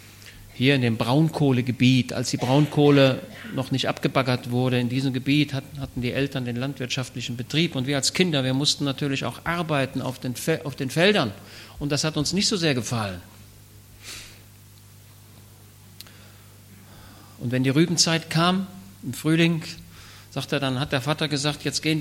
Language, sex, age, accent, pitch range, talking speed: German, male, 50-69, German, 120-155 Hz, 155 wpm